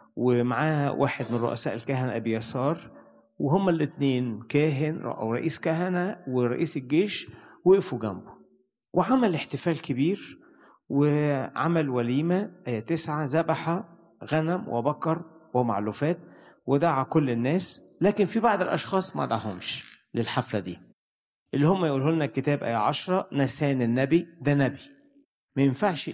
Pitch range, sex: 120-165 Hz, male